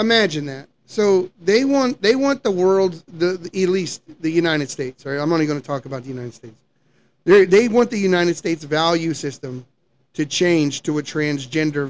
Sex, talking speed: male, 190 wpm